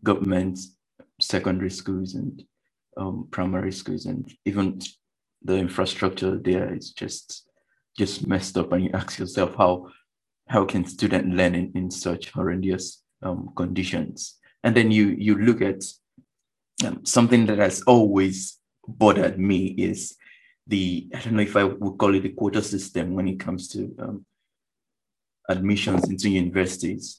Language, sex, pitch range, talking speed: English, male, 90-100 Hz, 145 wpm